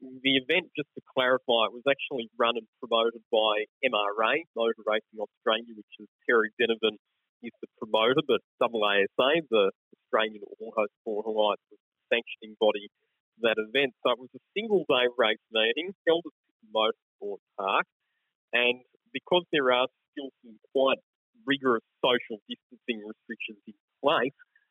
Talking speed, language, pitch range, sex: 155 wpm, English, 110-150 Hz, male